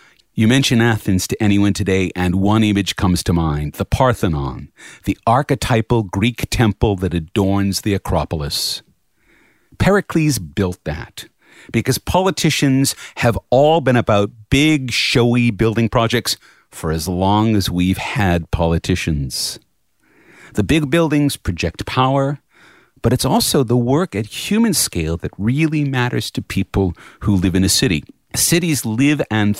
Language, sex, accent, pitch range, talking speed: English, male, American, 95-135 Hz, 140 wpm